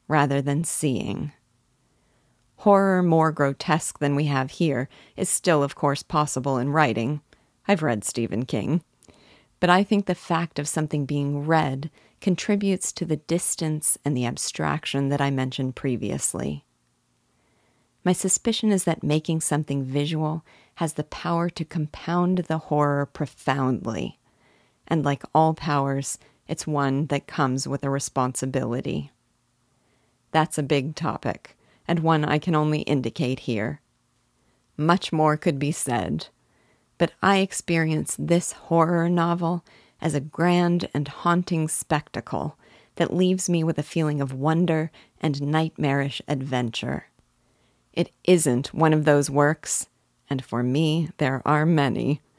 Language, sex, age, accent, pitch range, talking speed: English, female, 40-59, American, 140-165 Hz, 135 wpm